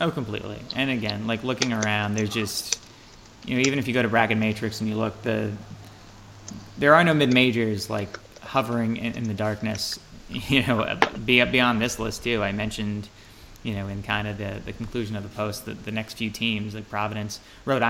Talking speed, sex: 200 wpm, male